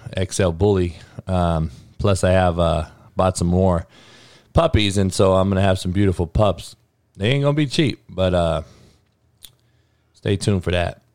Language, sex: English, male